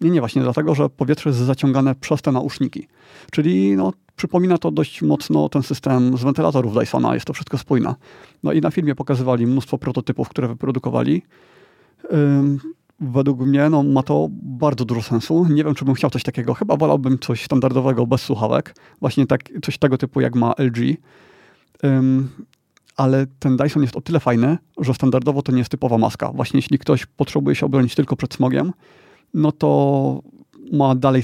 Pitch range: 125-145 Hz